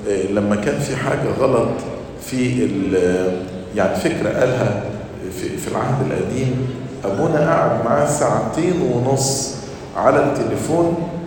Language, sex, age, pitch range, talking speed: English, male, 50-69, 105-145 Hz, 100 wpm